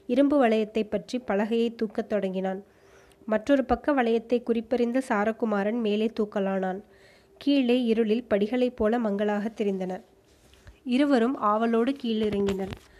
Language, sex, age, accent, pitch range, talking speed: Tamil, female, 20-39, native, 210-240 Hz, 100 wpm